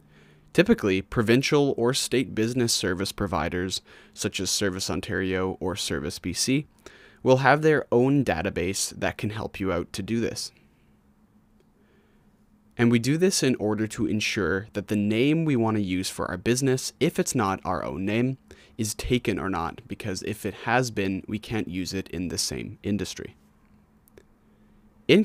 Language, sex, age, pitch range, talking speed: English, male, 20-39, 95-125 Hz, 165 wpm